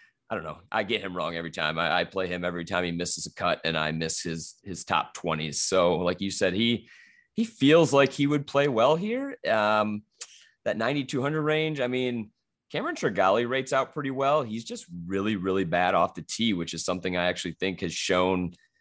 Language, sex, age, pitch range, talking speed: English, male, 30-49, 90-120 Hz, 215 wpm